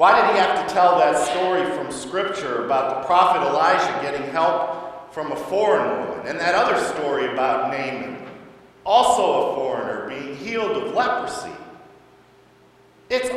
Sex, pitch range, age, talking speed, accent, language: male, 140-200 Hz, 50-69, 155 wpm, American, English